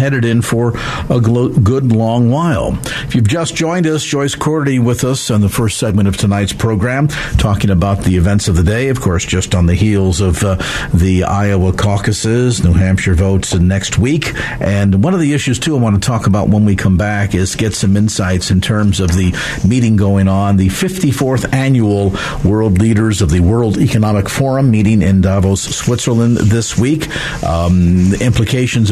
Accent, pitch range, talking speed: American, 95-130 Hz, 190 wpm